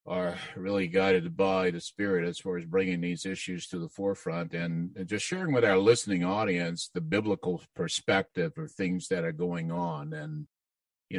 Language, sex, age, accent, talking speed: English, male, 50-69, American, 175 wpm